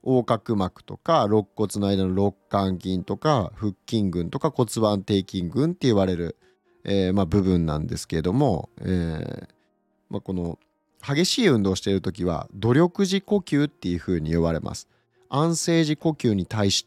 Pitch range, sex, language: 95-130 Hz, male, Japanese